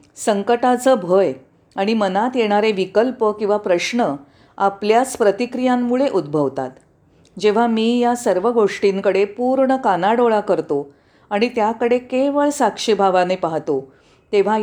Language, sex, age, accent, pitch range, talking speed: Marathi, female, 40-59, native, 185-240 Hz, 105 wpm